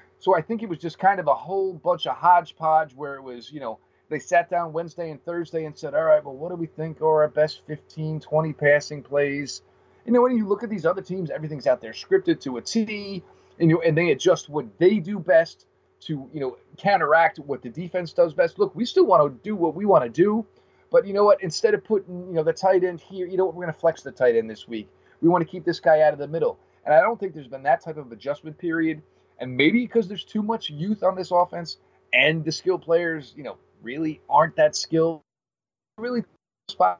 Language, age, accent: English, 30-49, American